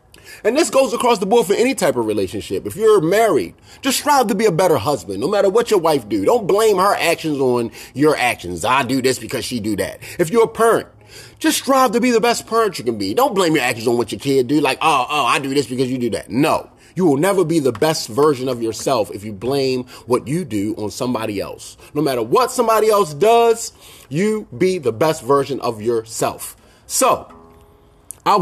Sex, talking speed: male, 230 wpm